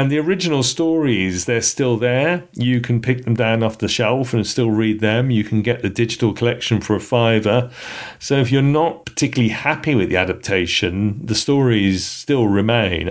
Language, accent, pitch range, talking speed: English, British, 95-125 Hz, 190 wpm